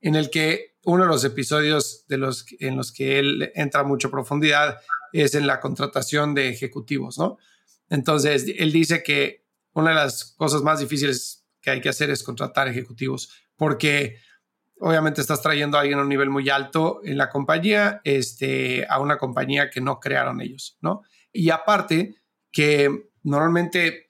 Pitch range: 140-160 Hz